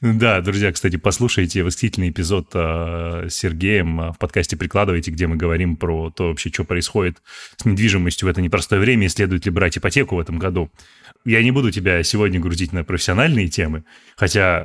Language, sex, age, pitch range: Russian, male, 20-39, 90-115 Hz